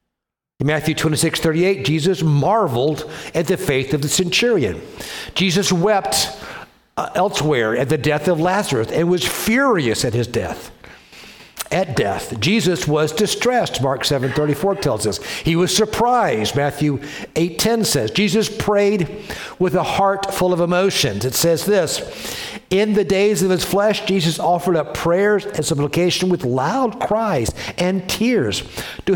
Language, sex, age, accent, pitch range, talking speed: English, male, 60-79, American, 140-185 Hz, 145 wpm